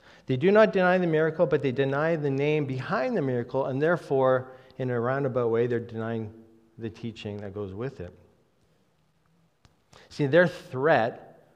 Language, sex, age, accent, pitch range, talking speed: English, male, 40-59, American, 120-160 Hz, 160 wpm